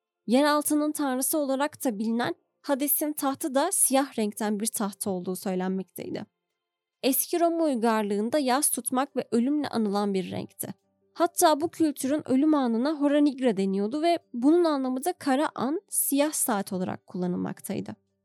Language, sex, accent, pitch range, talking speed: Turkish, female, native, 200-295 Hz, 135 wpm